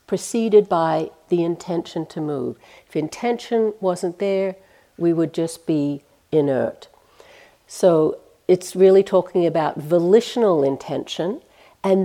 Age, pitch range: 60-79, 160-195 Hz